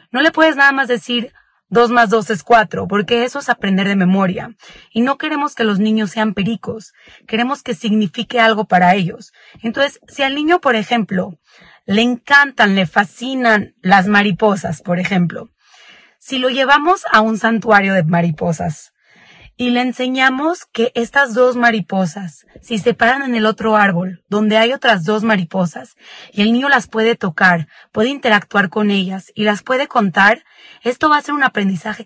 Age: 30-49